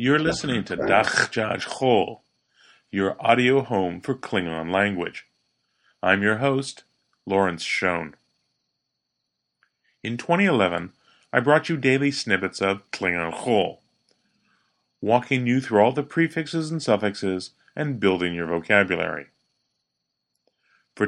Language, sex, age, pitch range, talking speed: English, male, 40-59, 95-145 Hz, 110 wpm